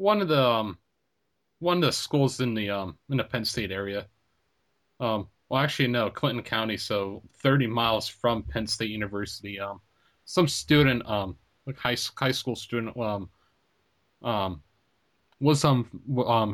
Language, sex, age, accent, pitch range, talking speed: English, male, 30-49, American, 100-130 Hz, 150 wpm